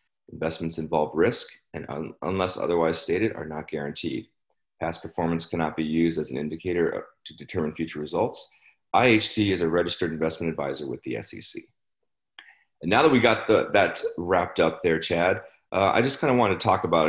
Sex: male